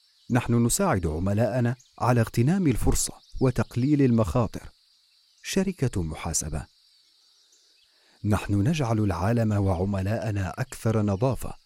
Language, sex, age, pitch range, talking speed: English, male, 40-59, 95-115 Hz, 80 wpm